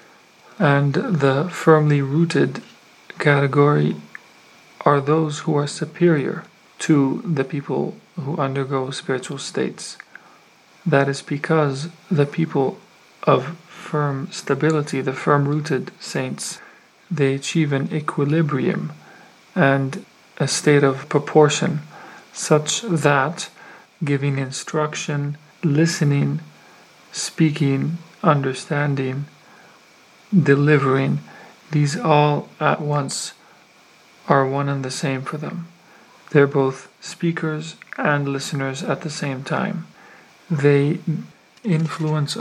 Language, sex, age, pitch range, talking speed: English, male, 40-59, 140-165 Hz, 95 wpm